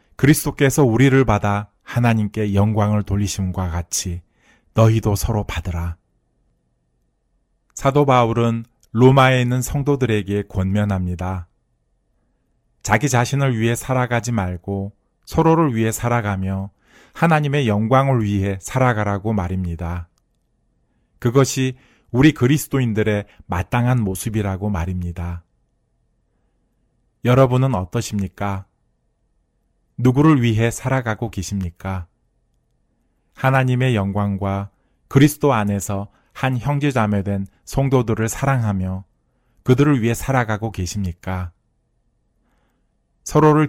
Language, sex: Korean, male